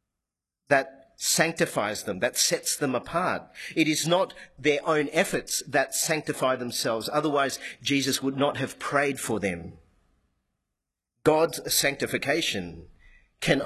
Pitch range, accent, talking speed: 110-145 Hz, Australian, 120 wpm